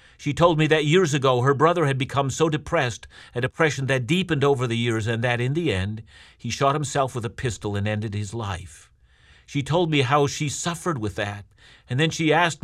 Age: 50-69